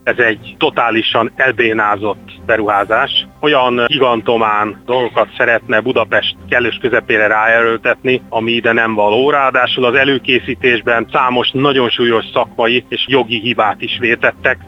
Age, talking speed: 30-49, 120 wpm